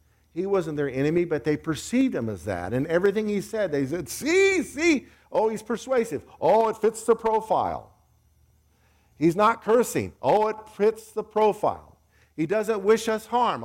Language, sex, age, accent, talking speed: English, male, 50-69, American, 170 wpm